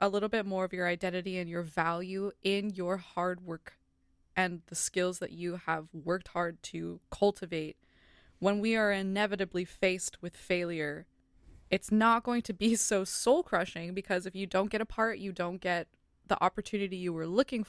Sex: female